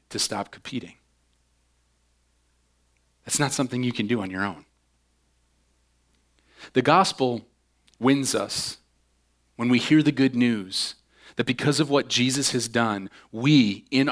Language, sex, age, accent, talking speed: English, male, 30-49, American, 130 wpm